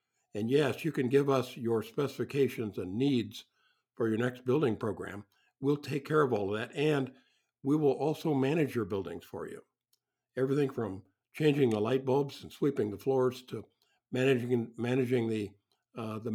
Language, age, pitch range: English, 60-79, 110-135 Hz